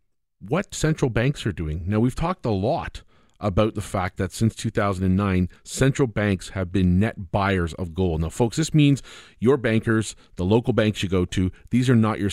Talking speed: 195 wpm